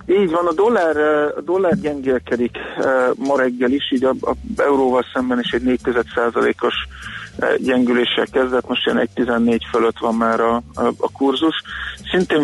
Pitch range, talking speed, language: 115-130 Hz, 155 wpm, Hungarian